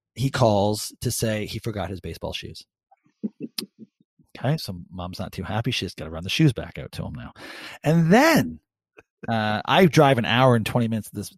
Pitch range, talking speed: 110-155 Hz, 200 wpm